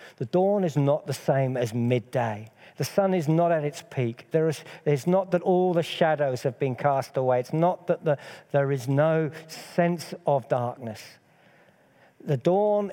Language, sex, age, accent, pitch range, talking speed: English, male, 50-69, British, 125-160 Hz, 165 wpm